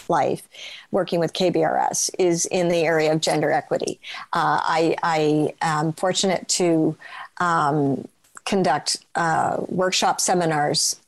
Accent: American